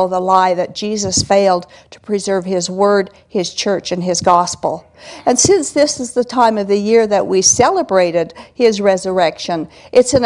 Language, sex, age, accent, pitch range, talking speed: English, female, 50-69, American, 200-245 Hz, 175 wpm